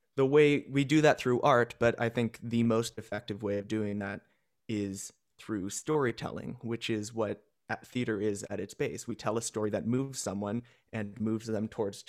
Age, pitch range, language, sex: 20-39, 105-125 Hz, English, male